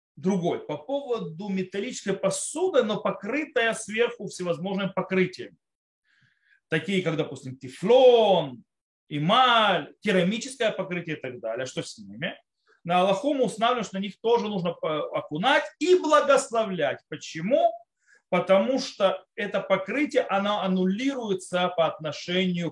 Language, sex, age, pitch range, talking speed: Russian, male, 30-49, 170-245 Hz, 110 wpm